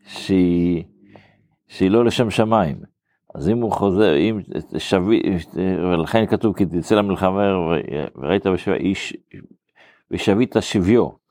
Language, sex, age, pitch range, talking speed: Hebrew, male, 50-69, 90-110 Hz, 110 wpm